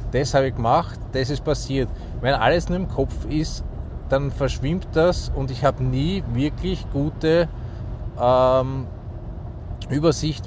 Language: German